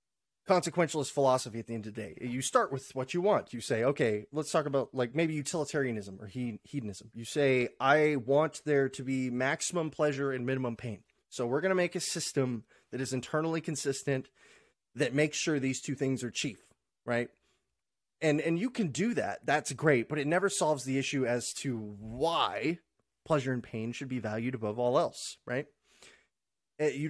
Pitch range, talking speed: 130-165 Hz, 190 wpm